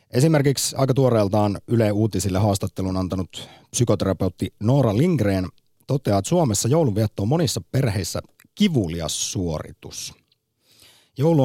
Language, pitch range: Finnish, 95-130 Hz